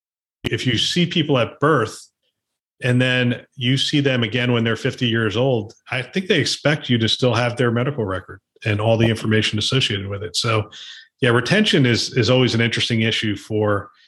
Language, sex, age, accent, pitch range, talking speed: English, male, 40-59, American, 110-130 Hz, 190 wpm